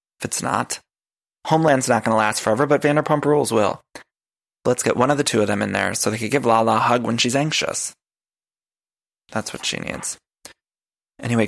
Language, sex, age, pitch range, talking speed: English, male, 20-39, 115-145 Hz, 200 wpm